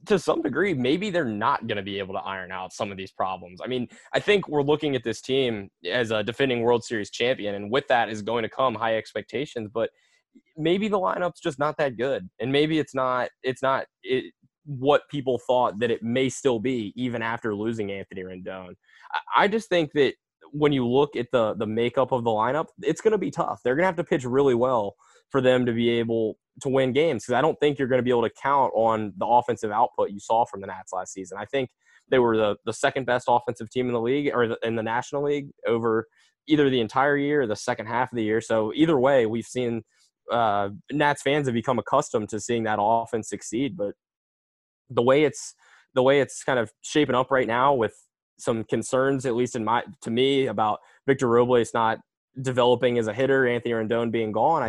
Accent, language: American, English